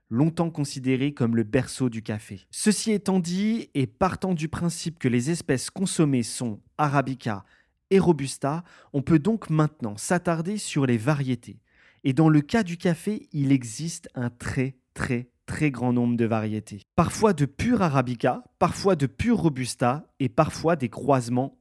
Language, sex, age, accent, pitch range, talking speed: French, male, 30-49, French, 125-170 Hz, 160 wpm